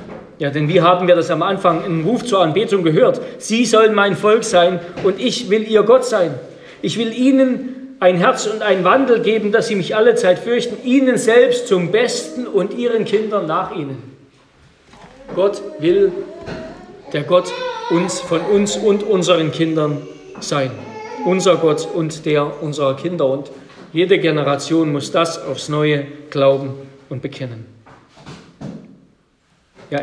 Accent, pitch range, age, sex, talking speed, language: German, 150-220 Hz, 40-59, male, 150 wpm, German